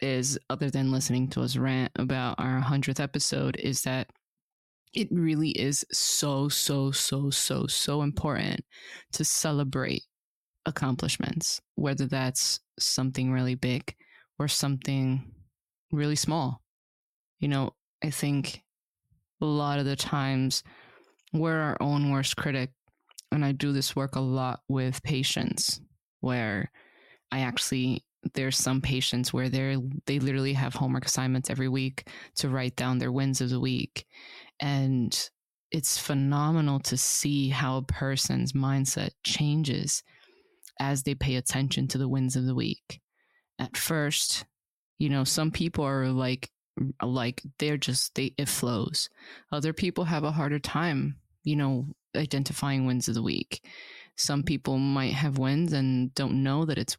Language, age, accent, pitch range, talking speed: English, 20-39, American, 130-145 Hz, 145 wpm